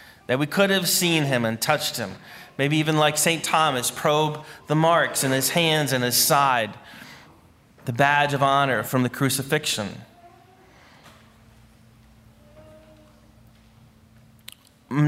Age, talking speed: 30-49, 125 wpm